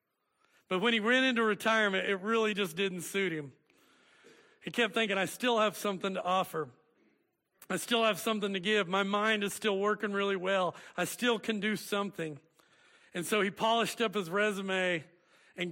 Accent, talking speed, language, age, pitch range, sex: American, 180 wpm, English, 40-59, 180-225 Hz, male